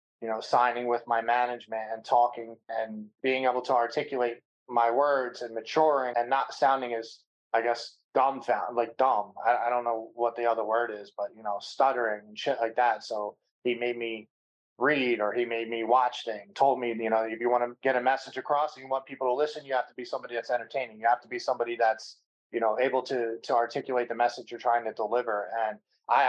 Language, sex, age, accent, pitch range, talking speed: English, male, 20-39, American, 110-125 Hz, 225 wpm